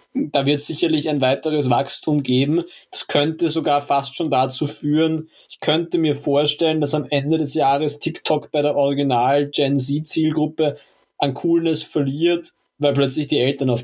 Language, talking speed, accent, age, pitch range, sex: German, 150 wpm, German, 20-39, 135-155 Hz, male